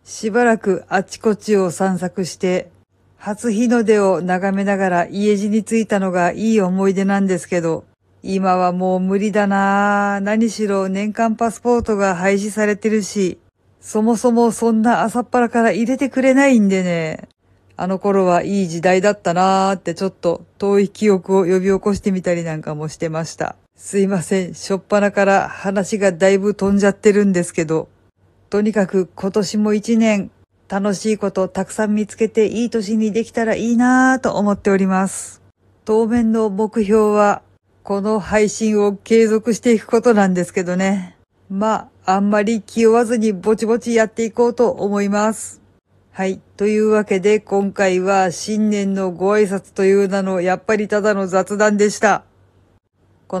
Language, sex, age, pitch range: Japanese, female, 50-69, 185-215 Hz